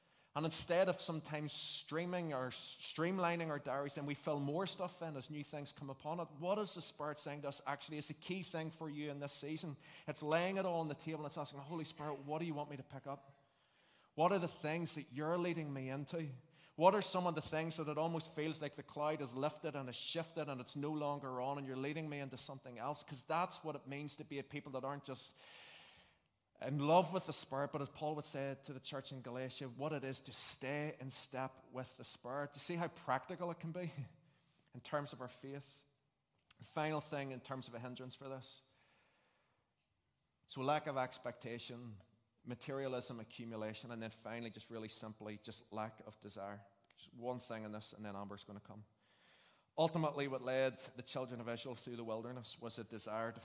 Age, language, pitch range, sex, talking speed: 20-39, English, 125-155 Hz, male, 220 wpm